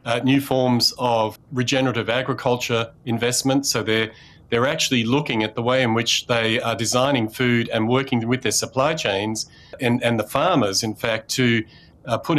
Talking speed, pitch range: 175 wpm, 115-135 Hz